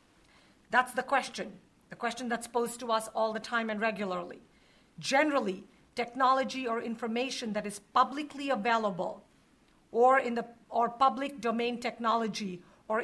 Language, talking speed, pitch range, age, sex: English, 140 wpm, 220-260 Hz, 50-69, female